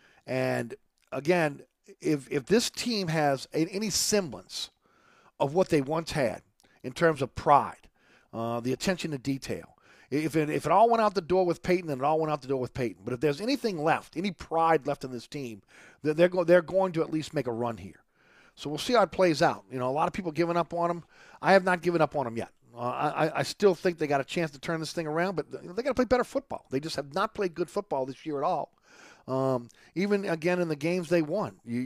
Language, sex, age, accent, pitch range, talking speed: English, male, 50-69, American, 135-175 Hz, 245 wpm